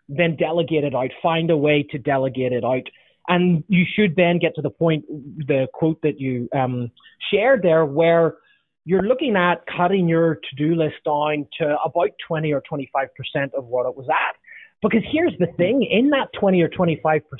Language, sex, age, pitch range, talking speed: English, male, 30-49, 145-180 Hz, 185 wpm